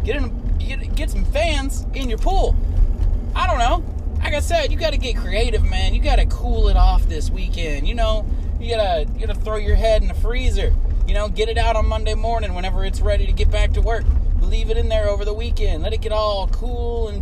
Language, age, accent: English, 20-39, American